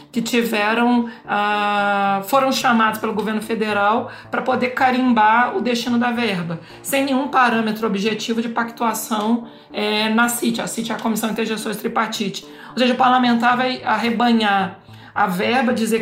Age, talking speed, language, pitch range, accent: 40-59, 150 wpm, Portuguese, 205-240 Hz, Brazilian